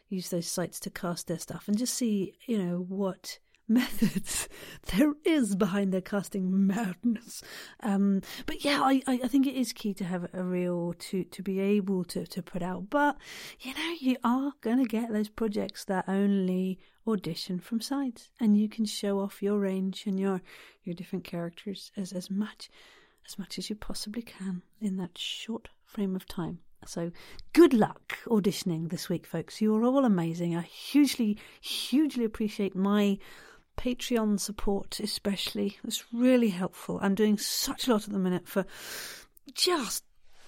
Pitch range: 180-225 Hz